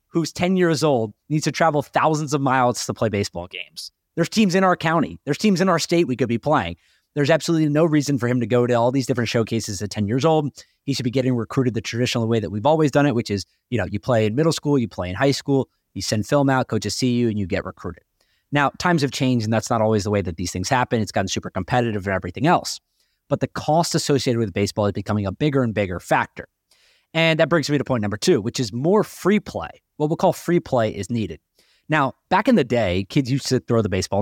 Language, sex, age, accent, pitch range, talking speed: English, male, 30-49, American, 105-140 Hz, 260 wpm